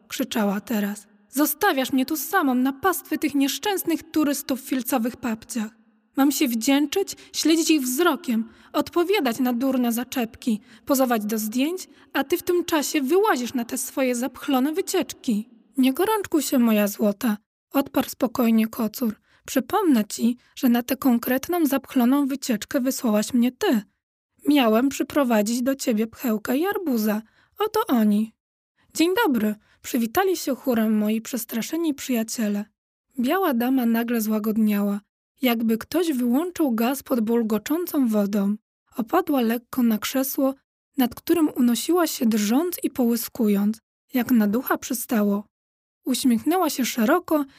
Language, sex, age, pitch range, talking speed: Polish, female, 20-39, 225-300 Hz, 135 wpm